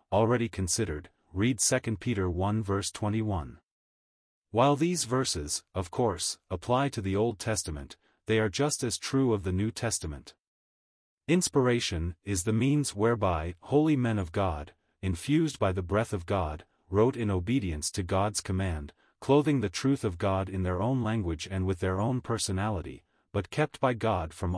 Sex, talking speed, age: male, 165 wpm, 40-59